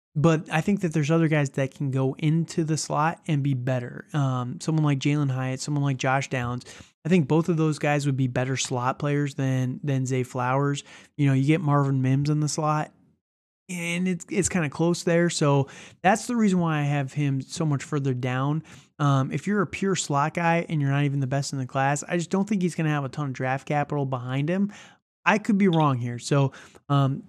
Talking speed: 230 wpm